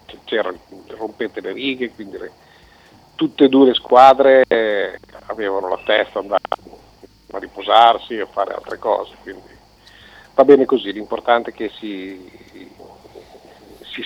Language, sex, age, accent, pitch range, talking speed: Italian, male, 50-69, native, 105-140 Hz, 135 wpm